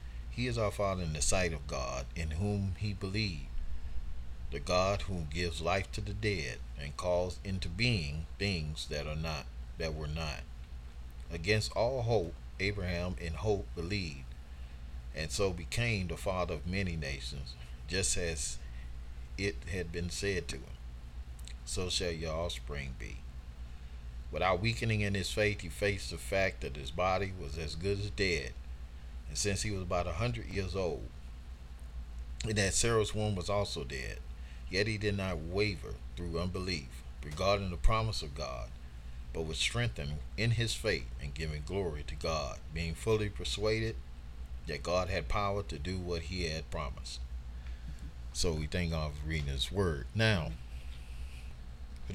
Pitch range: 65-95 Hz